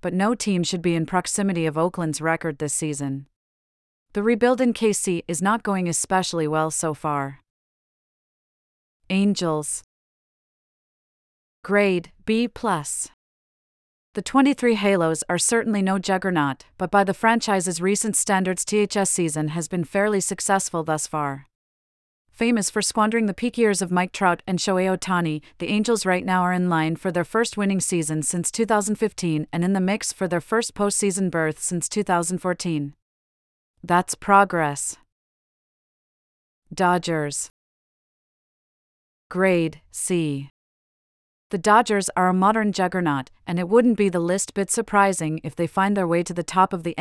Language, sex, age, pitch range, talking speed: English, female, 40-59, 160-200 Hz, 145 wpm